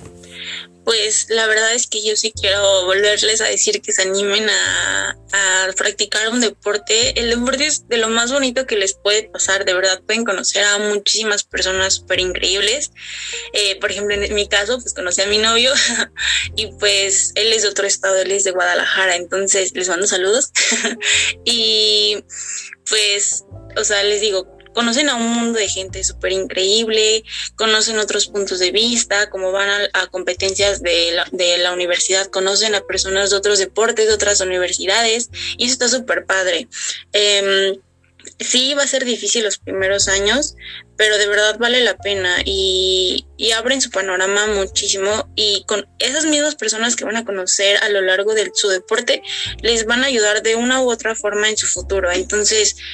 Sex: female